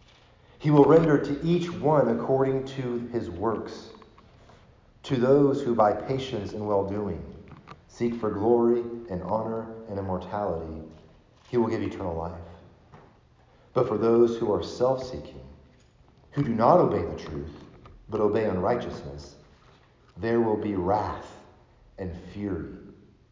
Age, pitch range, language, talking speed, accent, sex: 40-59, 85-115 Hz, English, 135 wpm, American, male